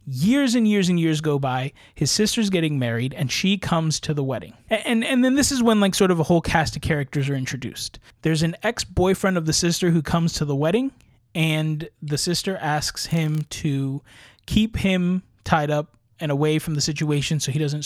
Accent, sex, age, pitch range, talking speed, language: American, male, 20-39, 145-185 Hz, 210 wpm, English